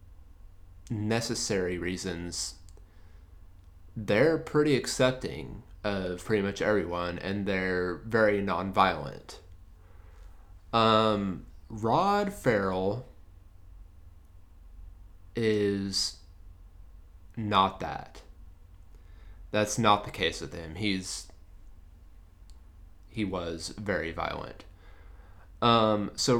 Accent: American